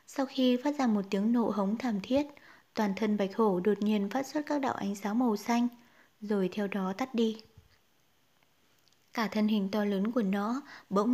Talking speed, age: 200 wpm, 20-39